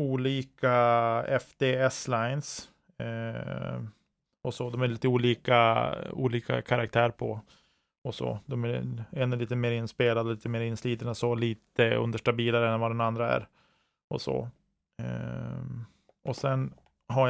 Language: Swedish